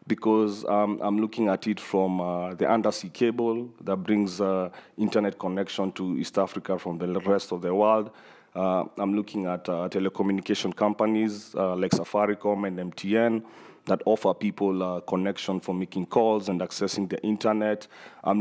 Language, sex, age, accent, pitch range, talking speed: English, male, 30-49, South African, 95-110 Hz, 165 wpm